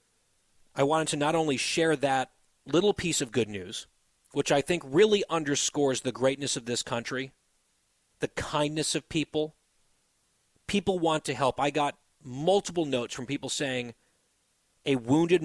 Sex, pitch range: male, 125-160 Hz